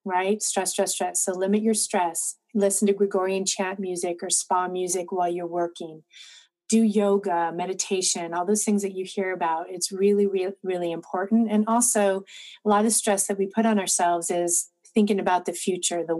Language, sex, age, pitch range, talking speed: English, female, 30-49, 180-205 Hz, 190 wpm